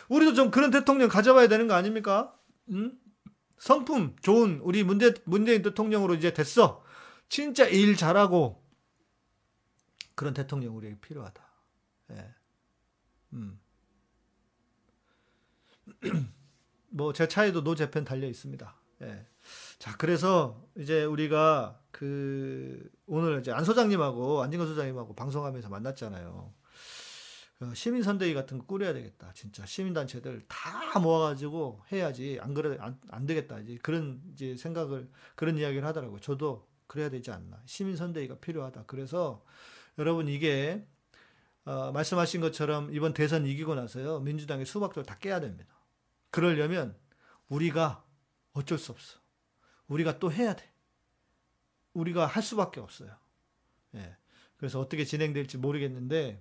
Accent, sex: native, male